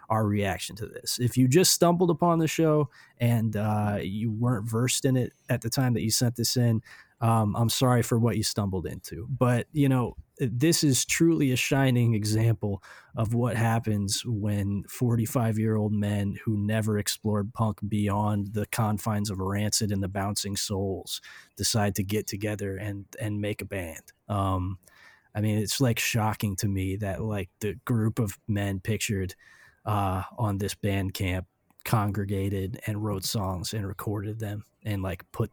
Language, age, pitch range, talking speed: English, 20-39, 100-120 Hz, 170 wpm